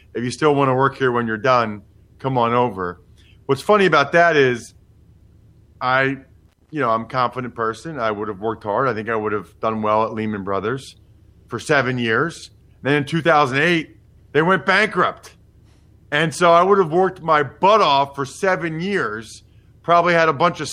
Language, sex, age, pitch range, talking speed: English, male, 40-59, 105-160 Hz, 190 wpm